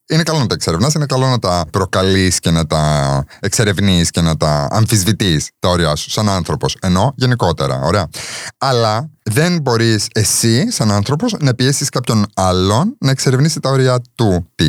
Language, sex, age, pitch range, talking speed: Greek, male, 30-49, 90-130 Hz, 170 wpm